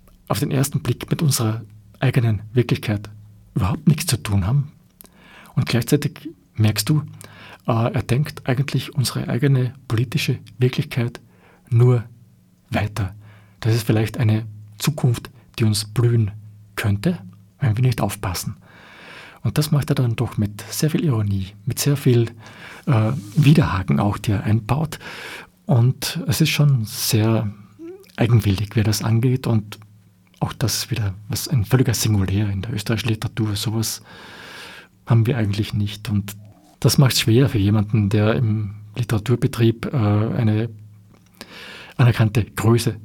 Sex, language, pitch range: male, German, 105-130 Hz